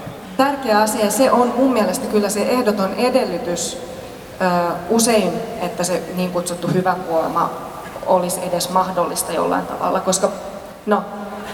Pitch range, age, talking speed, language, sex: 185-230 Hz, 30-49, 130 wpm, Finnish, female